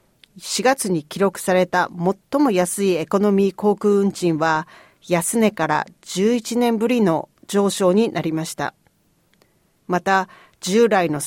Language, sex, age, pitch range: Japanese, female, 40-59, 170-225 Hz